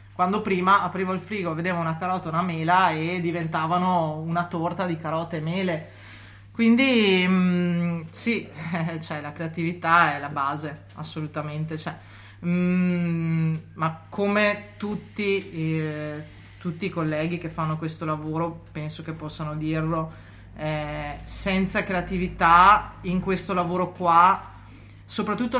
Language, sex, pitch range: Italian, female, 155-180 Hz